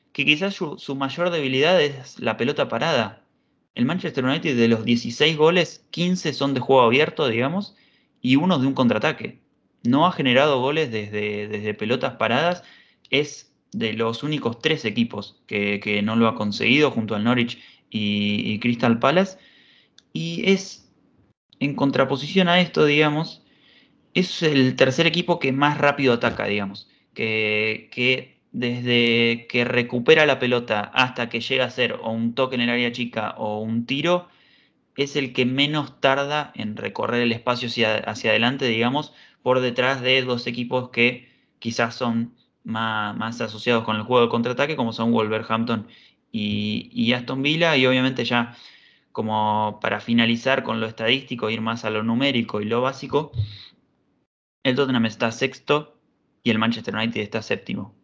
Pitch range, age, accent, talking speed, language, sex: 115-140 Hz, 20-39, Argentinian, 160 wpm, Spanish, male